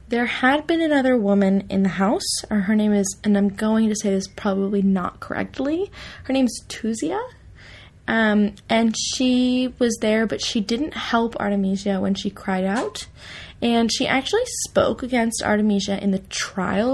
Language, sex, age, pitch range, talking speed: English, female, 20-39, 195-230 Hz, 165 wpm